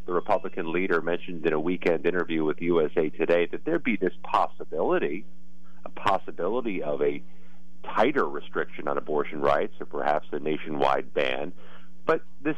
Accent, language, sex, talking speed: American, English, male, 155 wpm